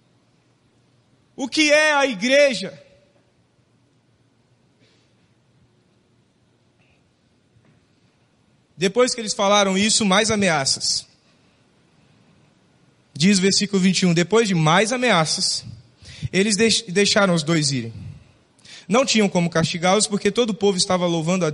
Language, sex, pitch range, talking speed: Portuguese, male, 180-240 Hz, 100 wpm